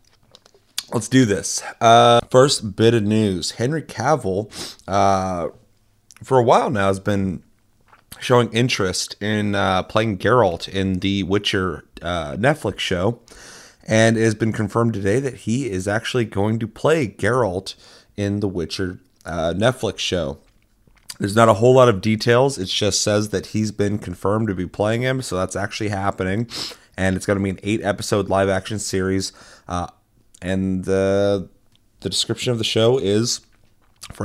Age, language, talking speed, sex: 30-49, English, 160 wpm, male